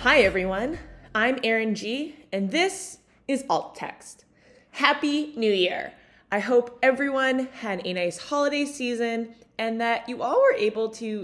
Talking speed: 150 wpm